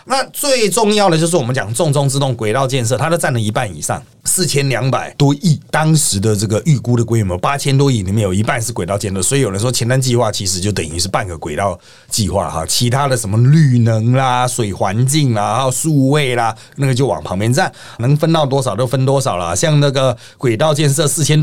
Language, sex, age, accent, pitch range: Chinese, male, 30-49, native, 105-145 Hz